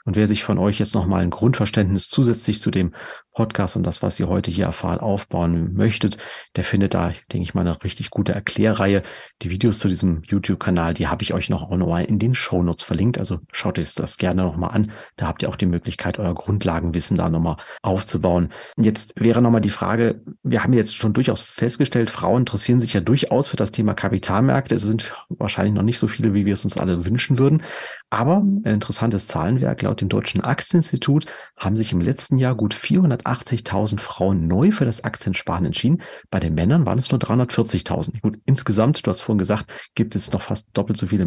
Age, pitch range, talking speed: 40-59, 95-120 Hz, 205 wpm